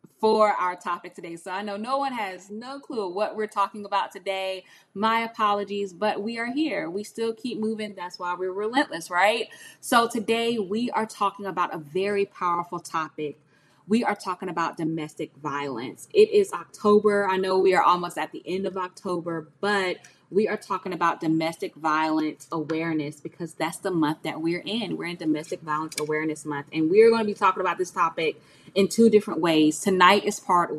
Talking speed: 190 wpm